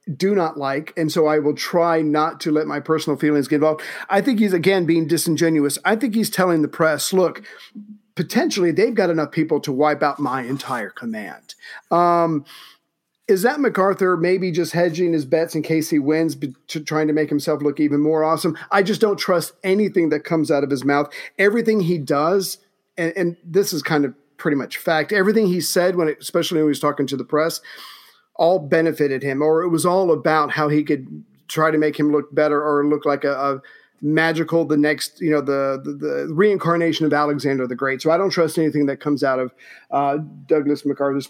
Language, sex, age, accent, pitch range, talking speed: English, male, 40-59, American, 150-190 Hz, 210 wpm